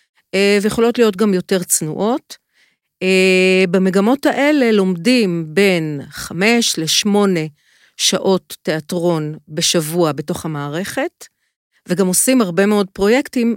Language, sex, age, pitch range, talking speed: Hebrew, female, 50-69, 170-230 Hz, 100 wpm